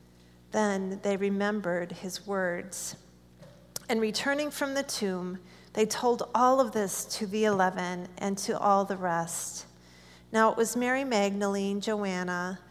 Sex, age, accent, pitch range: female, 40-59, American, 175-220 Hz